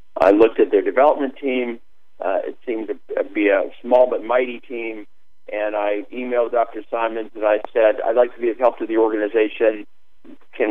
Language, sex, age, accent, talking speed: English, male, 50-69, American, 190 wpm